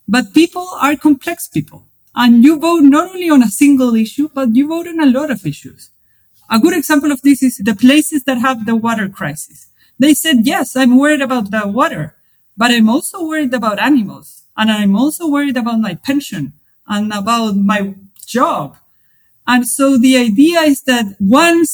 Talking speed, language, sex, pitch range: 185 wpm, English, female, 210-280 Hz